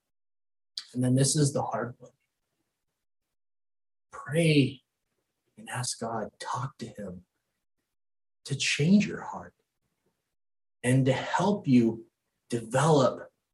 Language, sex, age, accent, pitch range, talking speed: English, male, 30-49, American, 105-140 Hz, 100 wpm